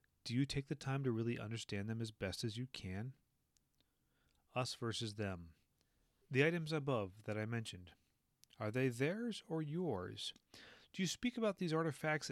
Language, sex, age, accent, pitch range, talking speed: English, male, 30-49, American, 110-155 Hz, 165 wpm